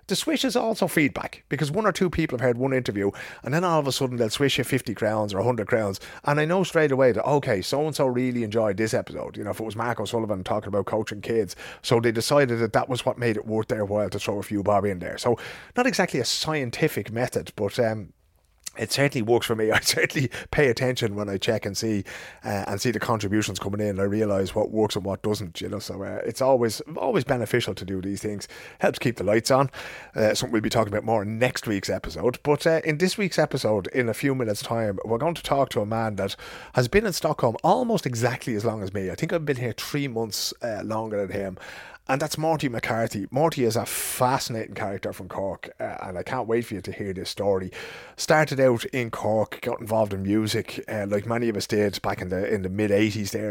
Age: 30-49